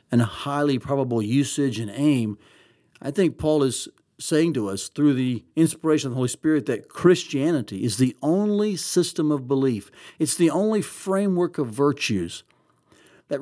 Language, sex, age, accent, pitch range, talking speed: English, male, 60-79, American, 130-165 Hz, 160 wpm